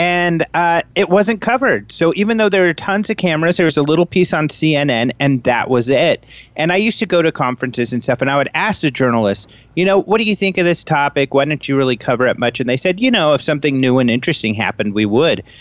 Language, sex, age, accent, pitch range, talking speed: English, male, 40-59, American, 120-155 Hz, 260 wpm